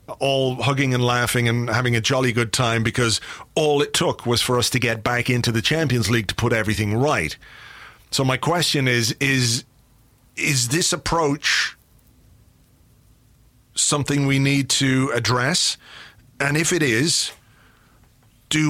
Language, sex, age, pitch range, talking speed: English, male, 40-59, 120-155 Hz, 150 wpm